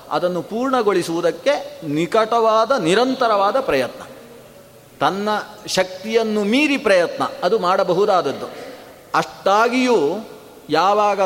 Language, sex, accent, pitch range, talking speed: Kannada, male, native, 160-210 Hz, 70 wpm